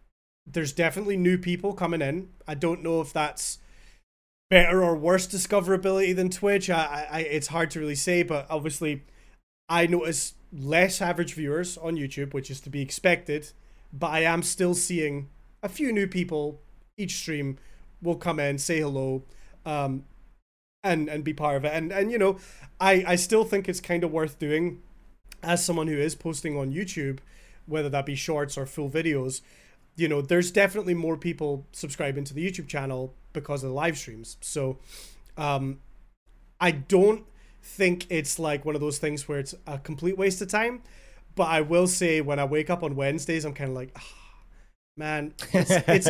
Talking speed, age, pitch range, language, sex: 180 wpm, 20-39, 140-175 Hz, English, male